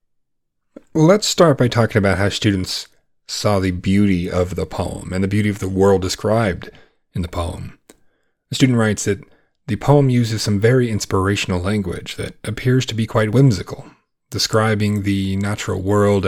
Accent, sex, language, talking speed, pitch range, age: American, male, English, 160 wpm, 95-110 Hz, 30-49